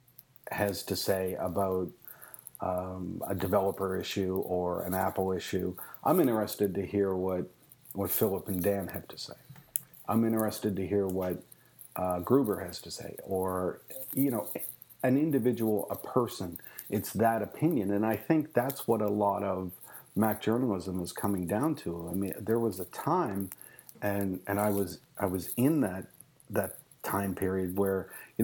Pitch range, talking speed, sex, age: 95-115 Hz, 160 wpm, male, 50-69